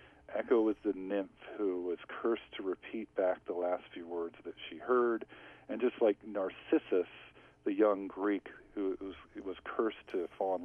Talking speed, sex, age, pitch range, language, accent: 175 wpm, male, 40-59, 90-115 Hz, English, American